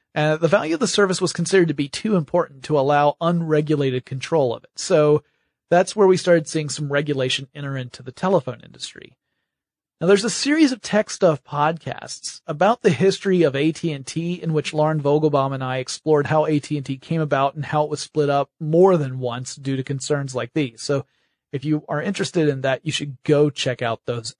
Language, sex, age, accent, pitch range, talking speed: English, male, 40-59, American, 140-170 Hz, 200 wpm